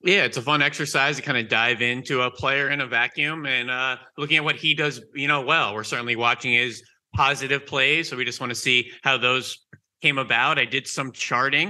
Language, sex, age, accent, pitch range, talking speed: English, male, 30-49, American, 120-145 Hz, 230 wpm